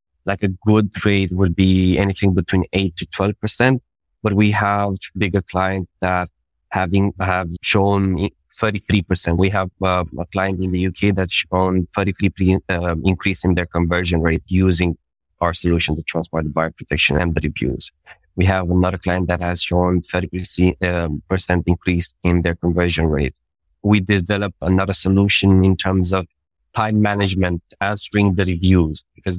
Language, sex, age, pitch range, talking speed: English, male, 20-39, 90-100 Hz, 155 wpm